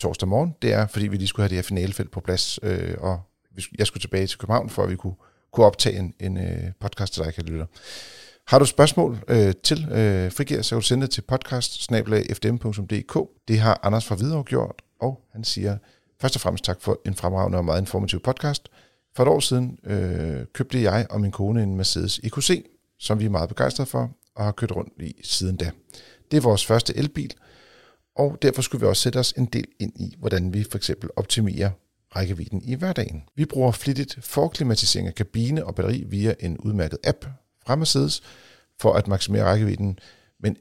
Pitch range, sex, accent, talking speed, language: 95-125 Hz, male, native, 200 wpm, Danish